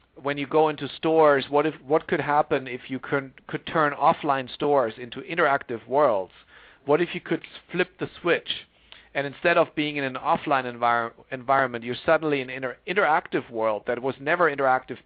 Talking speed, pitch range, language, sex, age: 185 wpm, 130-155 Hz, English, male, 50-69